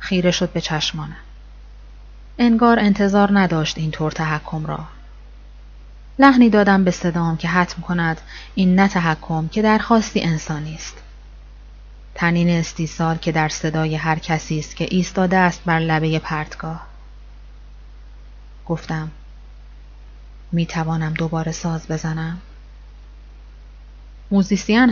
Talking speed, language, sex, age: 105 wpm, Persian, female, 30-49